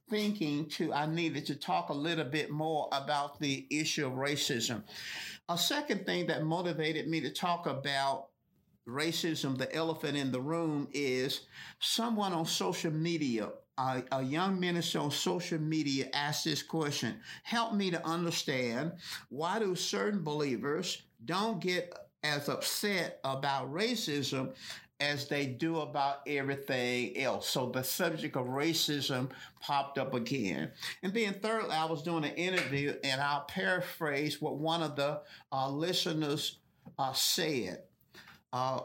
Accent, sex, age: American, male, 50-69